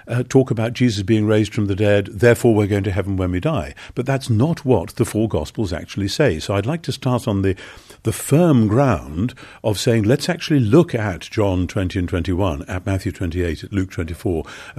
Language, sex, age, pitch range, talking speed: English, male, 50-69, 95-120 Hz, 210 wpm